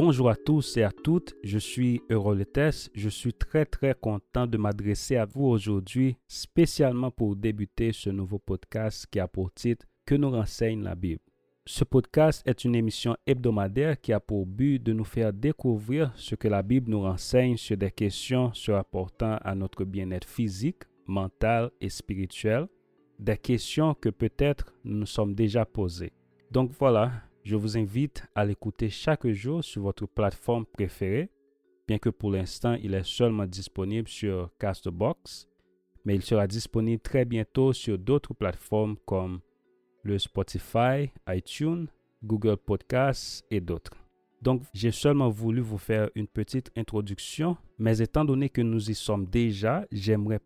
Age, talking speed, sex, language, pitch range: 30-49, 160 wpm, male, French, 100-125 Hz